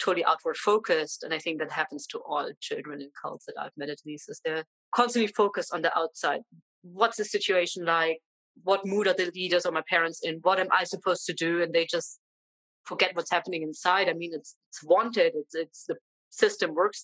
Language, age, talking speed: English, 30-49, 210 wpm